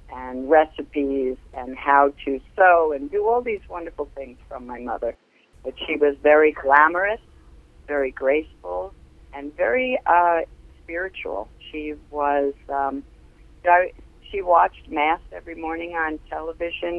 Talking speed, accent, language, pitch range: 125 wpm, American, English, 135-155 Hz